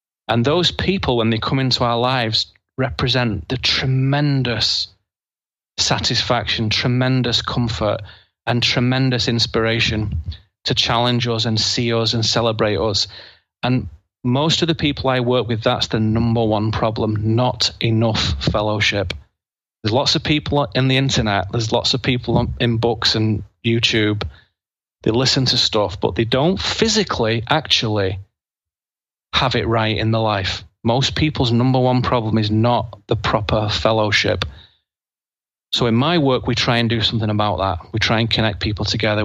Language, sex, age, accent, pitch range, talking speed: English, male, 30-49, British, 105-125 Hz, 155 wpm